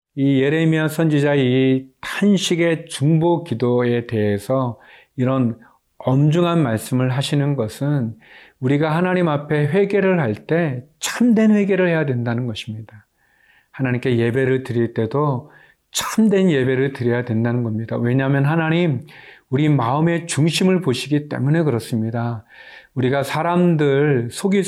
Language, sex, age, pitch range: Korean, male, 40-59, 125-160 Hz